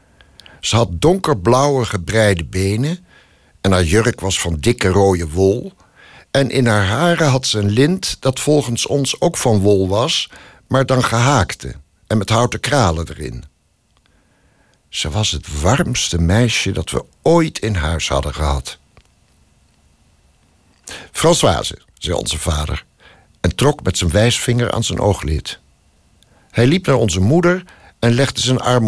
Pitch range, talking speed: 90-130 Hz, 145 wpm